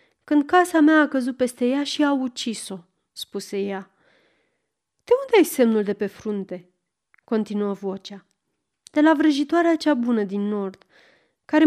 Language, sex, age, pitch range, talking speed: Romanian, female, 30-49, 205-295 Hz, 145 wpm